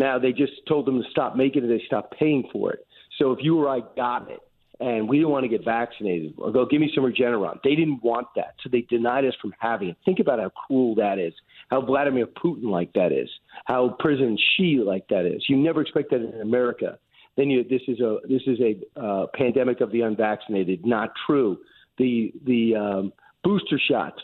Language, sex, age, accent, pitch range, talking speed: English, male, 50-69, American, 120-145 Hz, 225 wpm